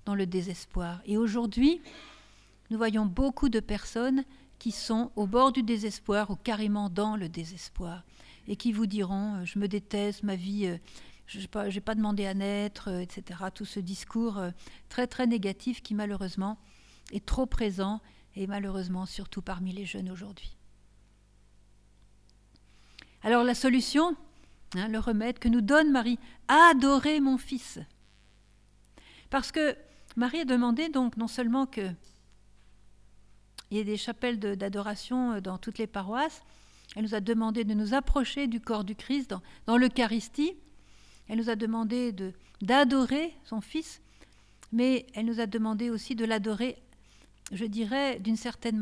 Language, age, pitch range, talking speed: French, 50-69, 195-245 Hz, 150 wpm